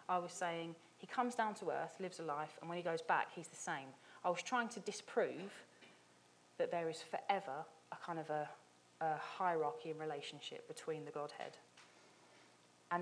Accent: British